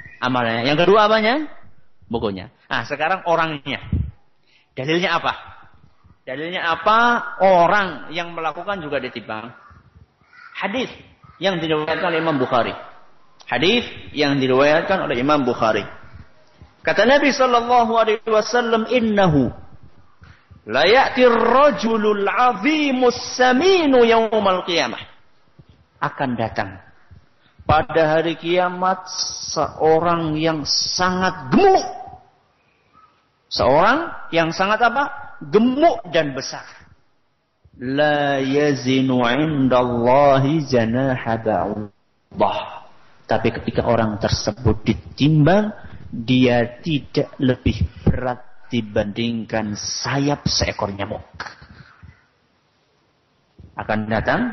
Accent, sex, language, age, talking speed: native, male, Indonesian, 50-69, 80 wpm